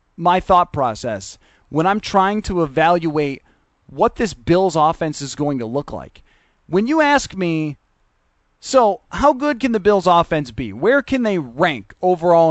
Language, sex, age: English, male, 30-49